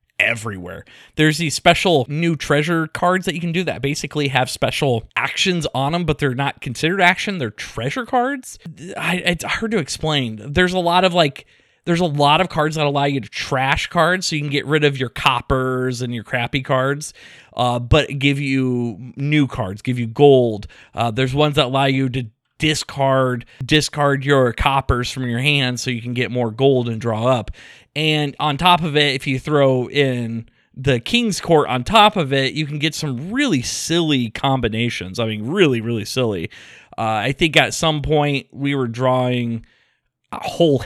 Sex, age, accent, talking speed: male, 20-39, American, 190 wpm